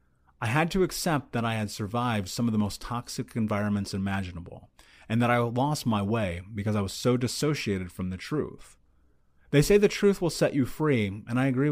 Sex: male